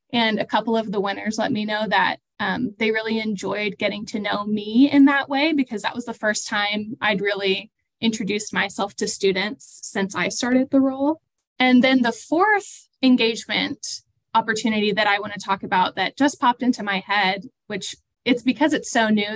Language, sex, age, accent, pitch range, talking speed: English, female, 10-29, American, 195-230 Hz, 190 wpm